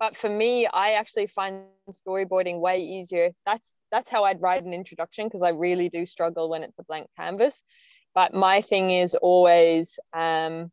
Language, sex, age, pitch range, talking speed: English, female, 20-39, 170-200 Hz, 180 wpm